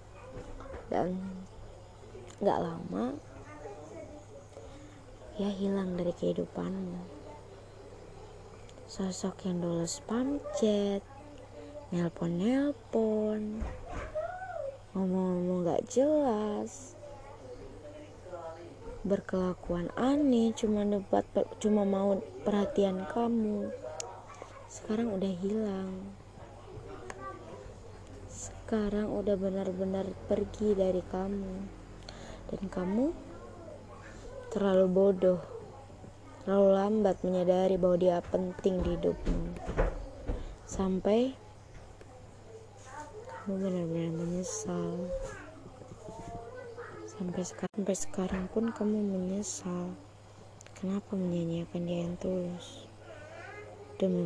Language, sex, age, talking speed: Indonesian, female, 20-39, 65 wpm